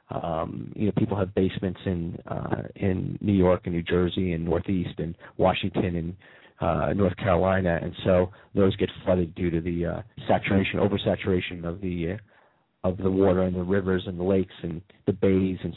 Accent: American